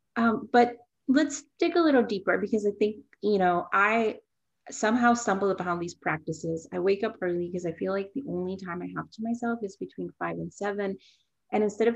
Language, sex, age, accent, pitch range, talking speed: English, female, 30-49, American, 180-235 Hz, 205 wpm